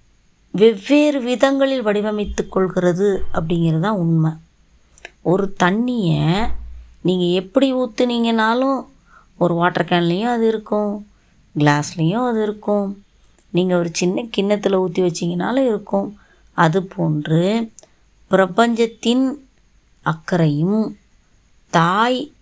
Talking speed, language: 85 wpm, Tamil